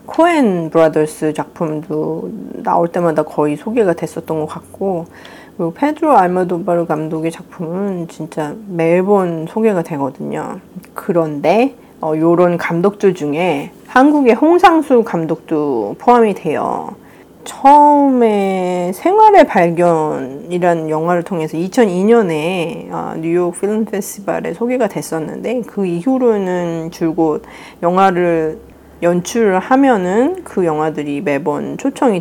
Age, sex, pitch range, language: 40-59, female, 160-225 Hz, Korean